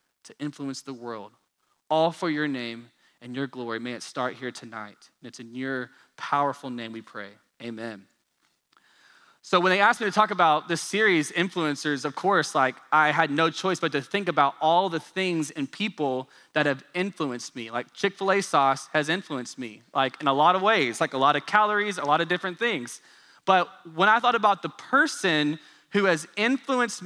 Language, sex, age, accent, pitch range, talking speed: English, male, 20-39, American, 135-180 Hz, 195 wpm